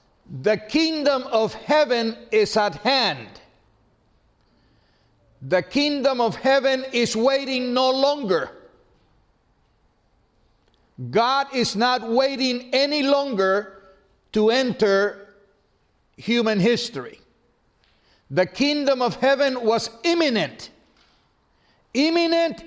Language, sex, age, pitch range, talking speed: English, male, 60-79, 205-265 Hz, 85 wpm